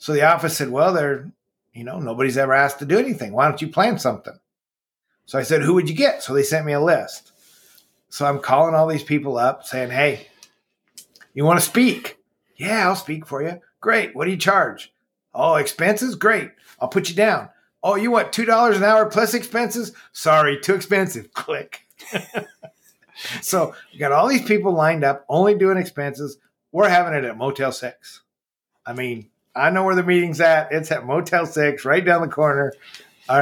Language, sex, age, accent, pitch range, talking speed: English, male, 50-69, American, 140-190 Hz, 195 wpm